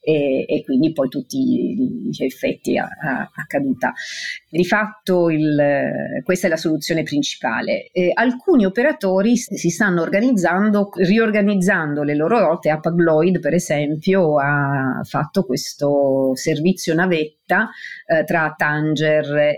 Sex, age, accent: female, 40-59, native